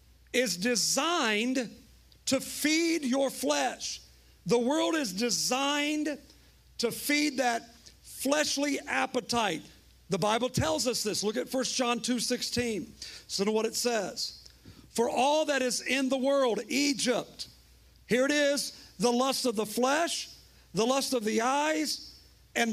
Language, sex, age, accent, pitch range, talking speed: English, male, 50-69, American, 200-265 Hz, 140 wpm